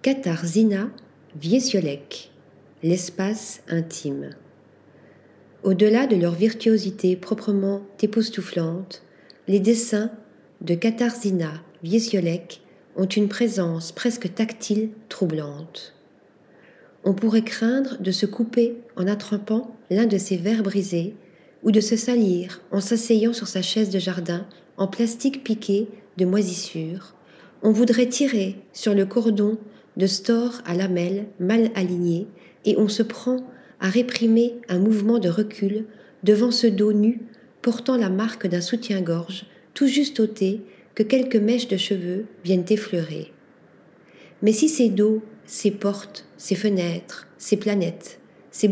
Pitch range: 185-225 Hz